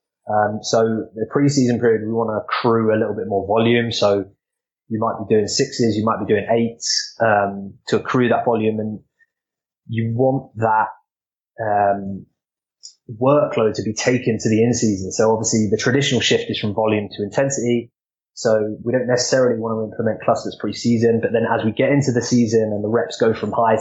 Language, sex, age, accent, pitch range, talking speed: English, male, 20-39, British, 110-120 Hz, 190 wpm